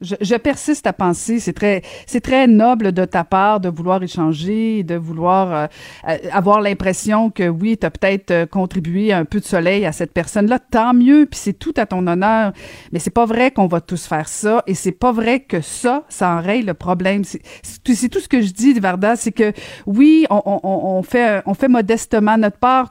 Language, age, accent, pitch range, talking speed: French, 50-69, Canadian, 185-235 Hz, 210 wpm